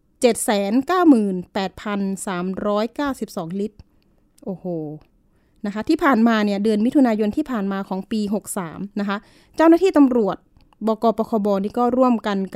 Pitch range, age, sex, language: 200-250 Hz, 20-39, female, Thai